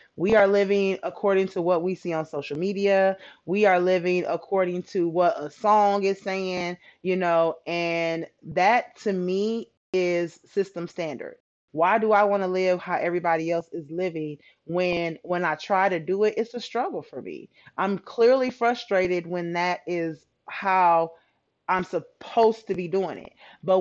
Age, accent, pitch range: 20-39, American, 170-195 Hz